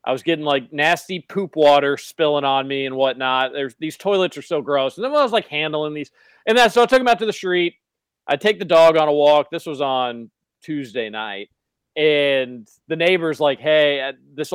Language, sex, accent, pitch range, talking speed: English, male, American, 125-170 Hz, 225 wpm